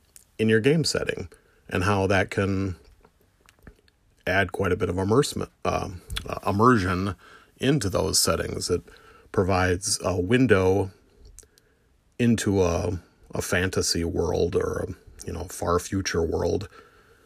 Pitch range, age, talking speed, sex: 90-100 Hz, 40-59, 110 wpm, male